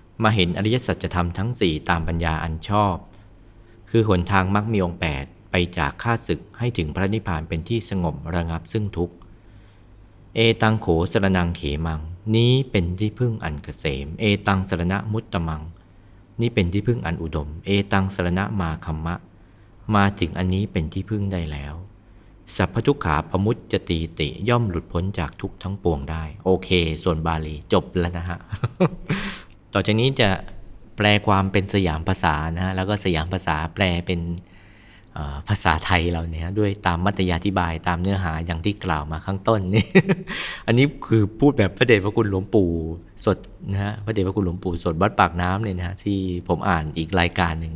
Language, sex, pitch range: Thai, male, 85-105 Hz